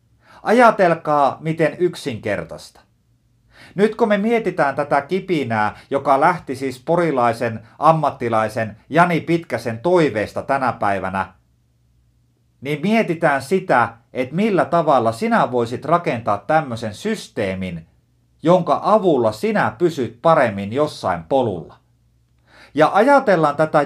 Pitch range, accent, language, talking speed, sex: 110-160 Hz, native, Finnish, 100 wpm, male